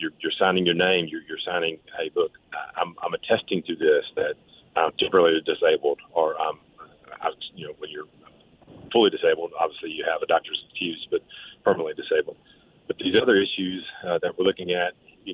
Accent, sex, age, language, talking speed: American, male, 40-59, English, 180 wpm